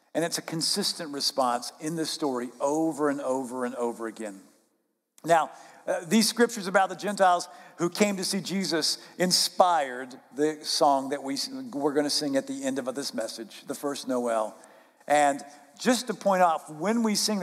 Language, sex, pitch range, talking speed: English, male, 140-195 Hz, 180 wpm